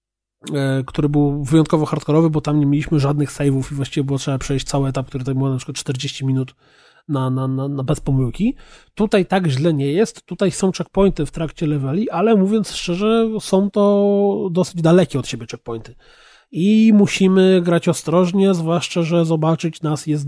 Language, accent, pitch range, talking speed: Polish, native, 145-190 Hz, 180 wpm